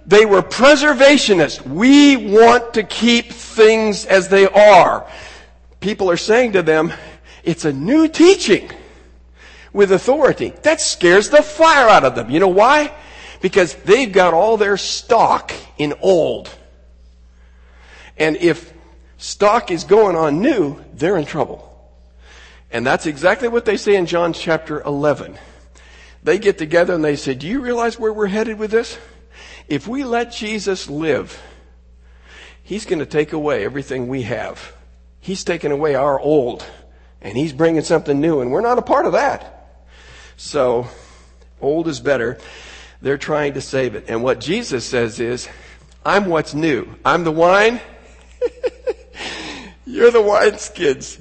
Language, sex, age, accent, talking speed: English, male, 60-79, American, 150 wpm